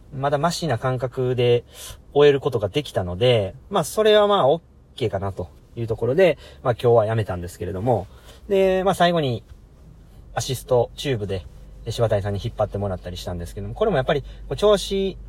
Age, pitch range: 40-59, 100-155 Hz